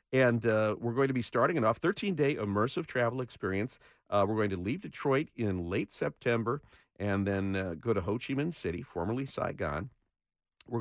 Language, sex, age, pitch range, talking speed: English, male, 50-69, 95-135 Hz, 190 wpm